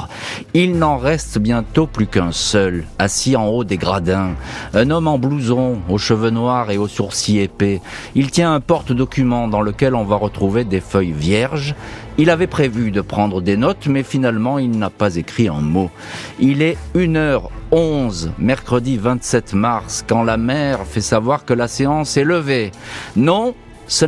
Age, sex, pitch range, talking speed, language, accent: 40-59, male, 100-135 Hz, 170 wpm, French, French